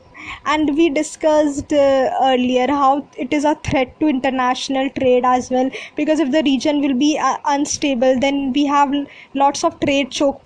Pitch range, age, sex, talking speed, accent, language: 255-300 Hz, 20-39, female, 170 wpm, Indian, English